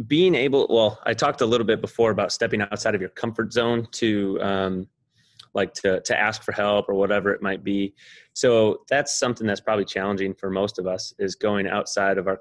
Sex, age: male, 20-39